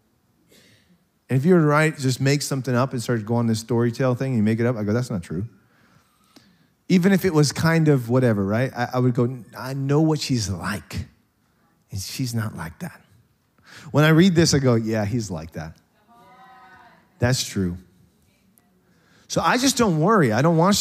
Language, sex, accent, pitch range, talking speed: English, male, American, 110-150 Hz, 200 wpm